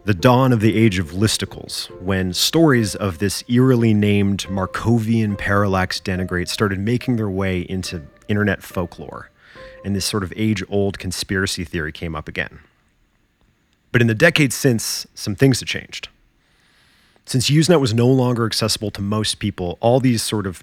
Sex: male